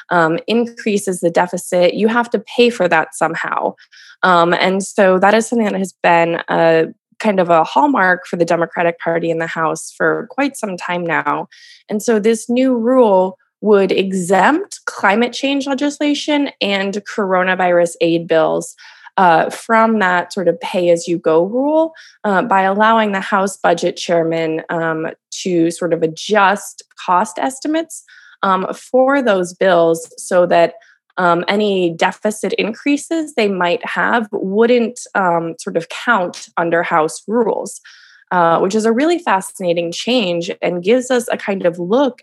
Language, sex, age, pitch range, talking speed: English, female, 20-39, 170-230 Hz, 150 wpm